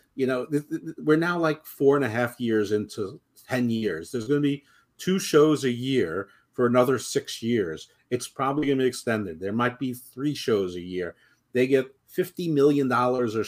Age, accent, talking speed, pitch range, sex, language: 50-69, American, 190 wpm, 120-150 Hz, male, English